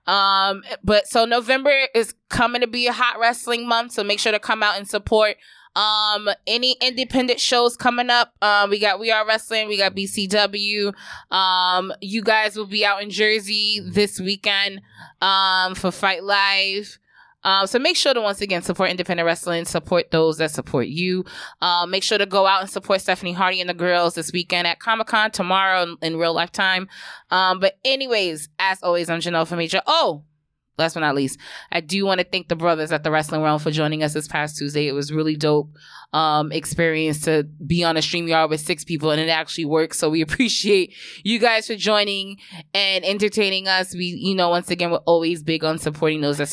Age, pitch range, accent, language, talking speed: 20-39, 160-210 Hz, American, English, 205 wpm